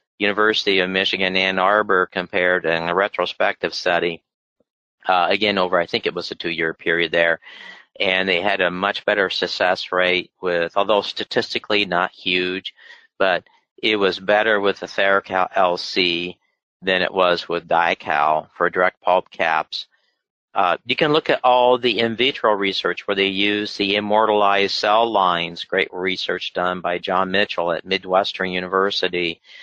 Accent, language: American, English